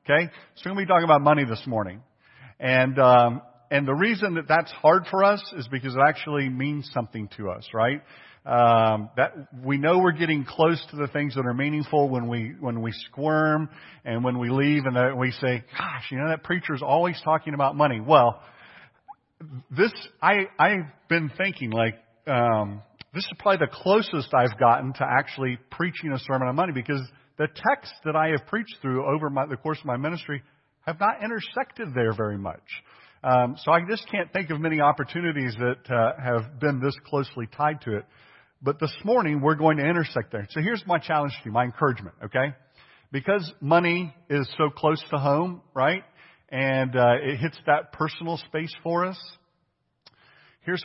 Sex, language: male, English